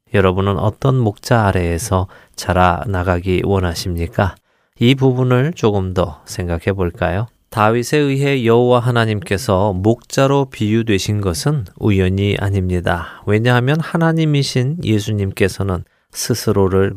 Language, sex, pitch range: Korean, male, 95-125 Hz